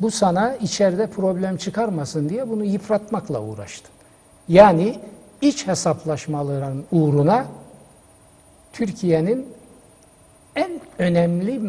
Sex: male